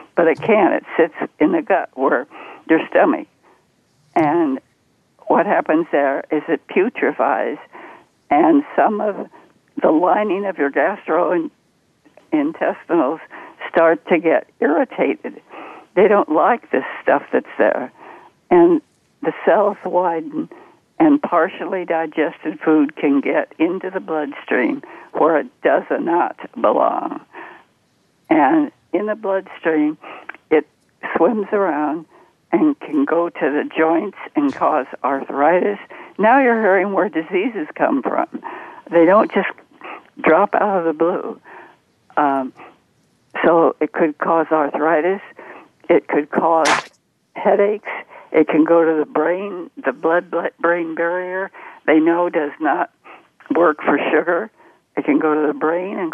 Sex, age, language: female, 60-79, English